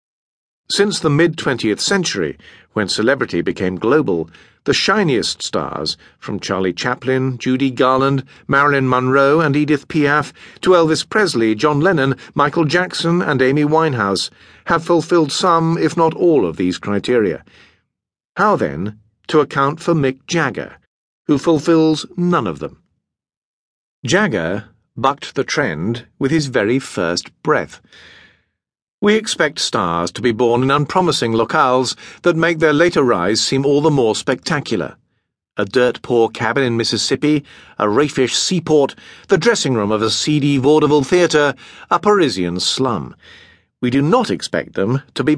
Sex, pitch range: male, 120-160 Hz